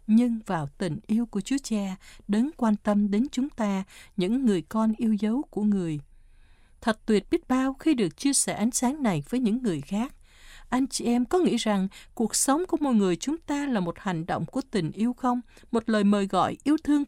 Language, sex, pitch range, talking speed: Vietnamese, female, 185-260 Hz, 220 wpm